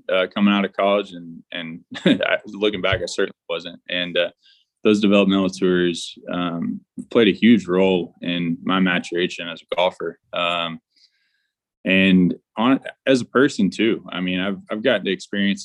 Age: 20-39